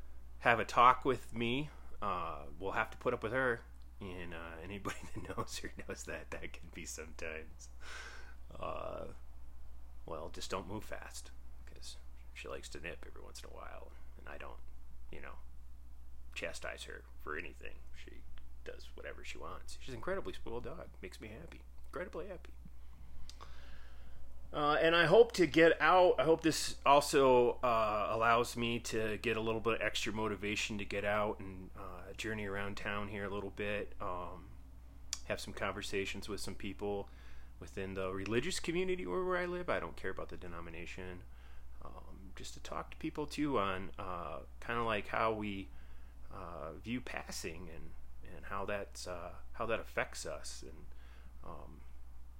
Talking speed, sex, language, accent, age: 170 wpm, male, English, American, 30-49